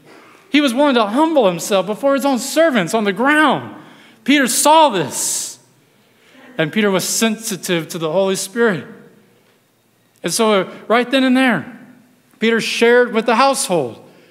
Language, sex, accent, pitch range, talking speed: English, male, American, 175-235 Hz, 145 wpm